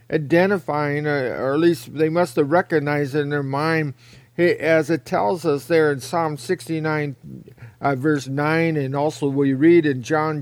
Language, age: English, 50-69